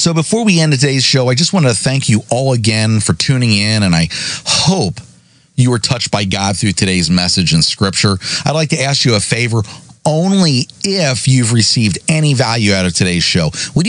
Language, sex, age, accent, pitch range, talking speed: English, male, 40-59, American, 110-155 Hz, 205 wpm